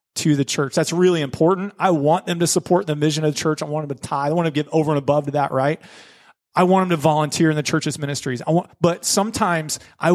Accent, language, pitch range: American, English, 150-180 Hz